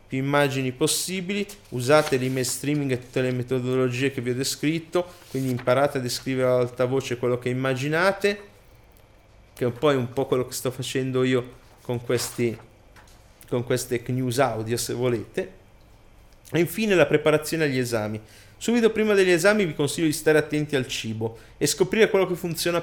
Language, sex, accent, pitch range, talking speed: Italian, male, native, 125-150 Hz, 165 wpm